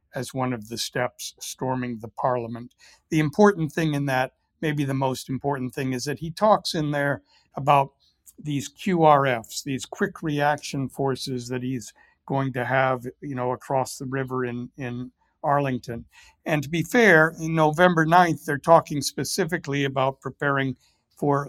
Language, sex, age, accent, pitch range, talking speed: English, male, 60-79, American, 130-155 Hz, 160 wpm